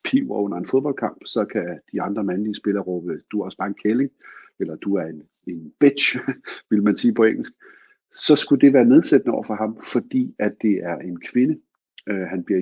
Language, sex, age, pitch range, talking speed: Danish, male, 50-69, 95-135 Hz, 220 wpm